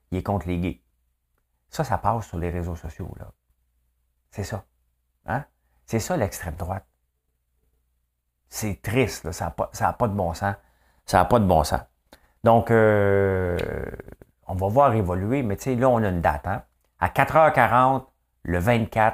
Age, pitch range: 50-69, 80-105 Hz